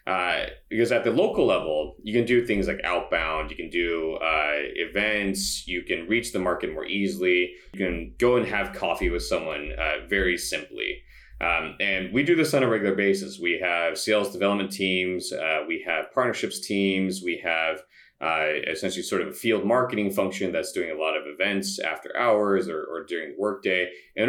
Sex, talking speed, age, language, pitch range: male, 190 wpm, 30-49, English, 90-110 Hz